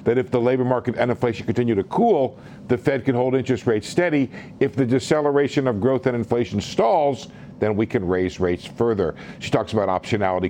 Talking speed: 200 wpm